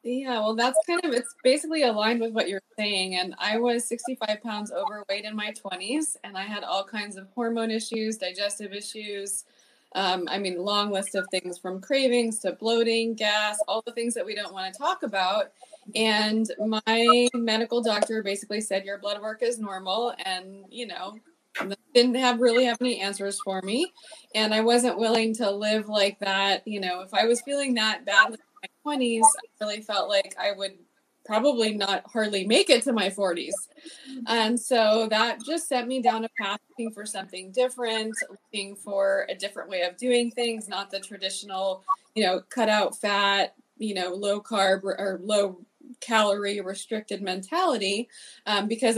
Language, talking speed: English, 180 wpm